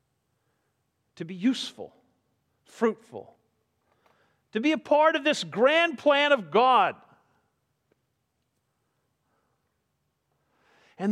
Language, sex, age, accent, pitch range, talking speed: English, male, 50-69, American, 165-230 Hz, 80 wpm